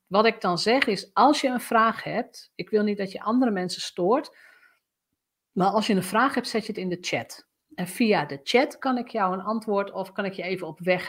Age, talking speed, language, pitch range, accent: 50-69, 250 wpm, Dutch, 190-245 Hz, Dutch